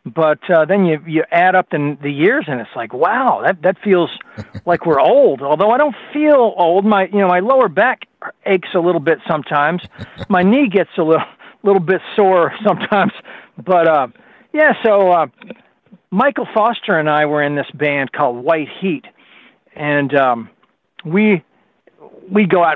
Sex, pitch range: male, 145-185 Hz